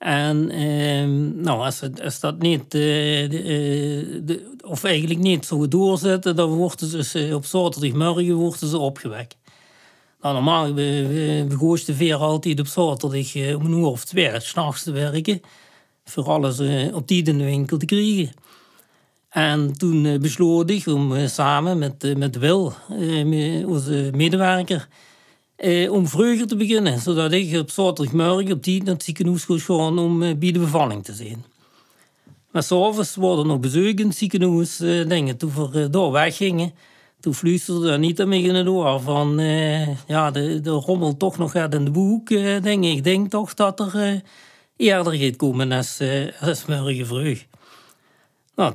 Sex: male